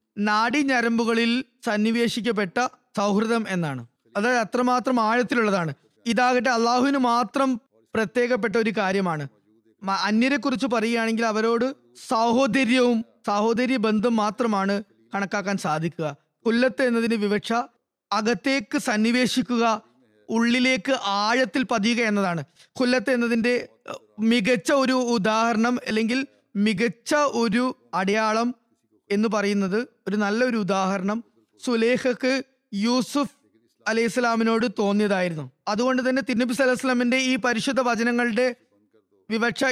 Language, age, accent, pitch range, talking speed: Malayalam, 20-39, native, 205-250 Hz, 90 wpm